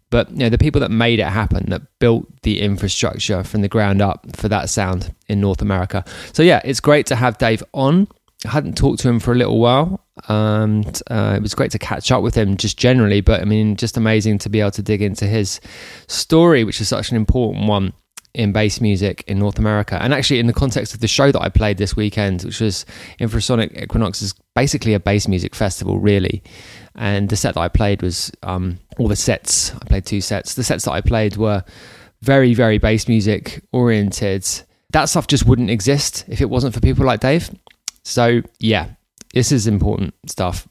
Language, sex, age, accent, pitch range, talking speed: English, male, 20-39, British, 105-125 Hz, 215 wpm